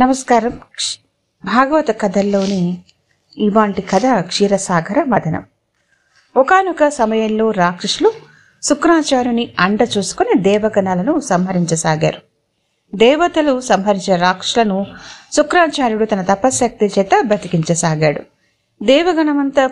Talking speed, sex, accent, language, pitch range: 75 wpm, female, native, Telugu, 185-260 Hz